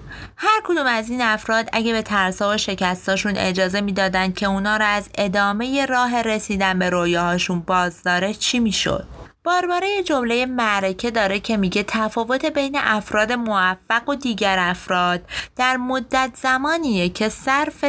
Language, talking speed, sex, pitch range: Persian, 150 wpm, female, 185-260 Hz